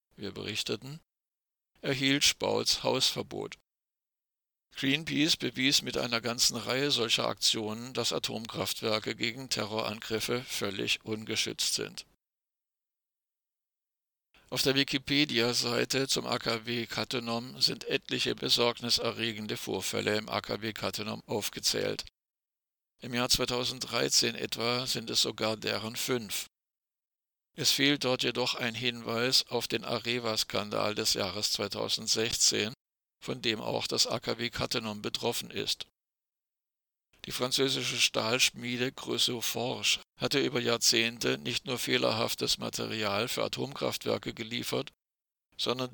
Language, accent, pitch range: German, German, 110-125 Hz